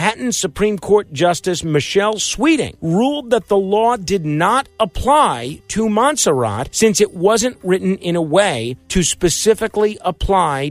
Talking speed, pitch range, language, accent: 135 wpm, 150-210 Hz, English, American